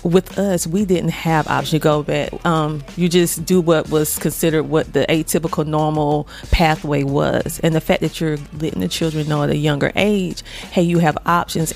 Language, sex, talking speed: English, female, 200 wpm